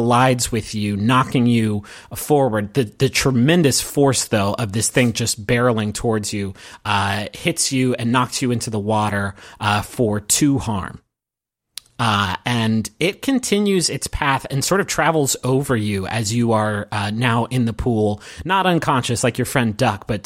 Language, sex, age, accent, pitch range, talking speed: English, male, 30-49, American, 110-130 Hz, 170 wpm